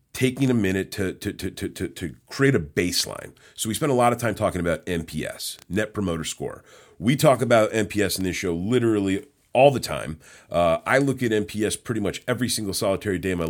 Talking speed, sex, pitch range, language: 220 wpm, male, 90-115 Hz, English